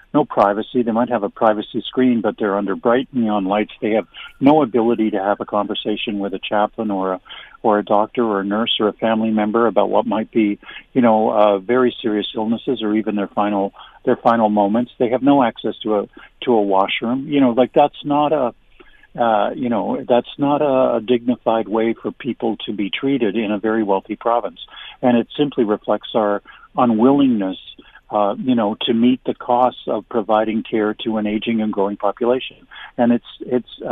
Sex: male